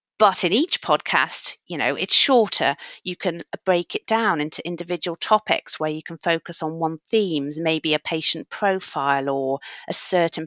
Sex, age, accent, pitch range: female, 40-59, British, 170-215 Hz